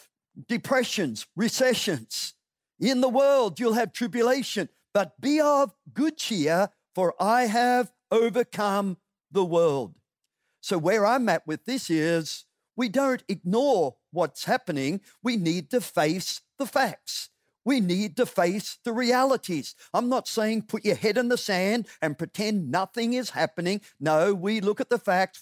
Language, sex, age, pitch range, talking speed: English, male, 50-69, 185-255 Hz, 150 wpm